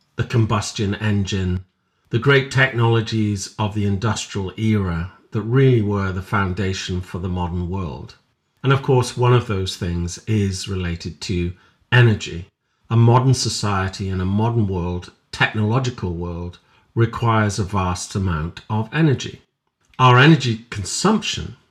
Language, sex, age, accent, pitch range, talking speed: English, male, 50-69, British, 95-120 Hz, 135 wpm